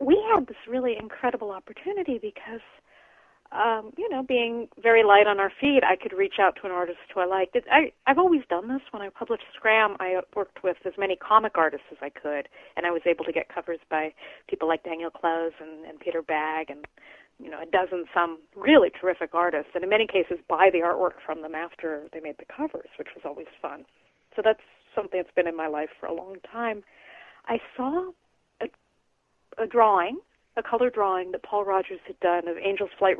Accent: American